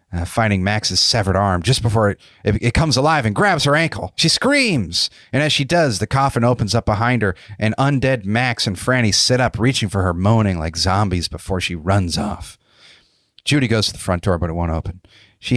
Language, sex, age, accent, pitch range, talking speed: English, male, 40-59, American, 100-135 Hz, 215 wpm